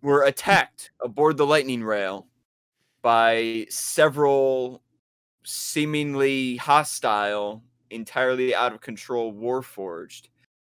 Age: 20-39